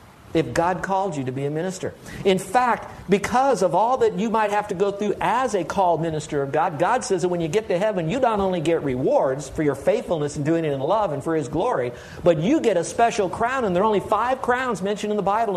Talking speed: 260 wpm